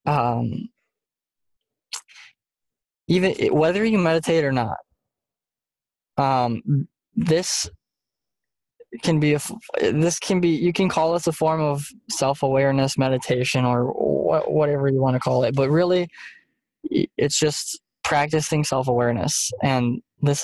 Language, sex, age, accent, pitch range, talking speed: English, male, 10-29, American, 125-165 Hz, 125 wpm